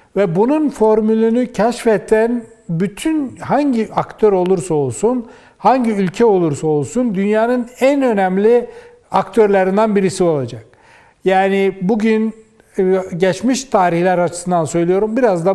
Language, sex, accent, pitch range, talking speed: Turkish, male, native, 180-230 Hz, 105 wpm